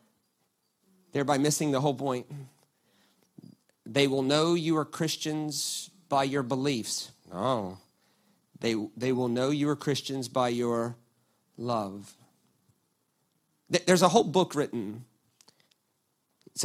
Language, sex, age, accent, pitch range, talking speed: English, male, 40-59, American, 115-150 Hz, 110 wpm